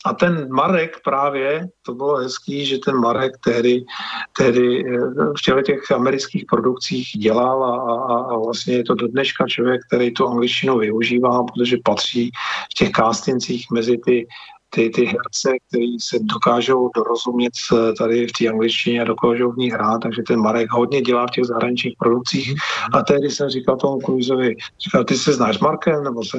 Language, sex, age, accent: Czech, male, 50-69, native